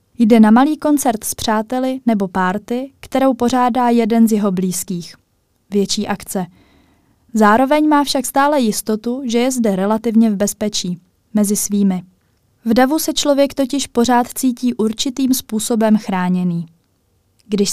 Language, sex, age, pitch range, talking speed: Czech, female, 20-39, 195-250 Hz, 135 wpm